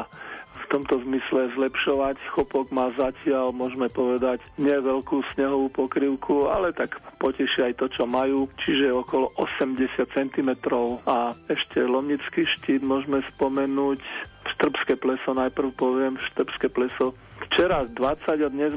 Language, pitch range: Slovak, 125-140 Hz